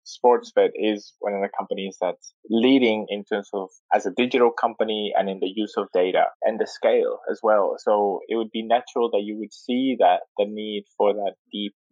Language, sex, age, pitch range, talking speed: English, male, 20-39, 105-155 Hz, 205 wpm